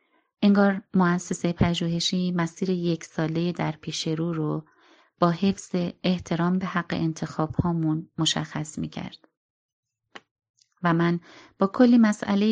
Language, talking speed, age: Persian, 110 wpm, 30-49